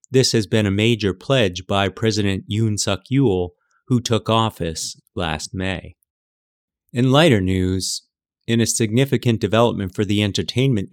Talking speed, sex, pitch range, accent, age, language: 135 wpm, male, 95-115 Hz, American, 30-49, English